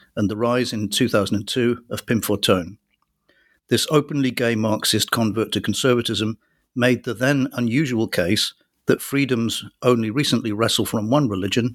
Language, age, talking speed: English, 50-69, 145 wpm